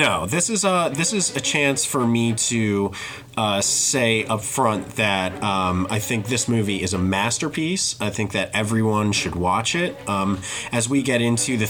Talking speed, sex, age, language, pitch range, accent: 190 wpm, male, 30-49, English, 100-125 Hz, American